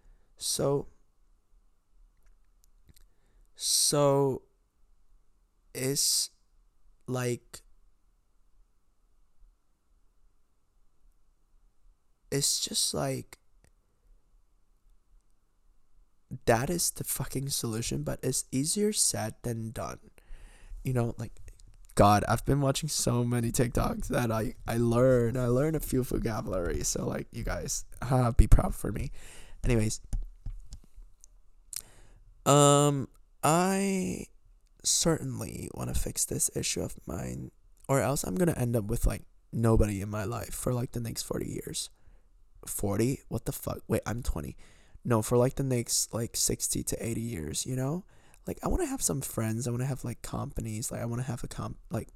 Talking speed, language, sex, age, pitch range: 135 wpm, English, male, 20-39, 100-130 Hz